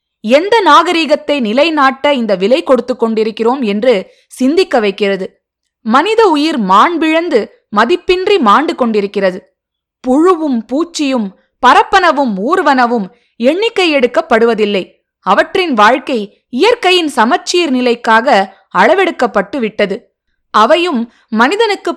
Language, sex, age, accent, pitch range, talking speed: Tamil, female, 20-39, native, 210-320 Hz, 80 wpm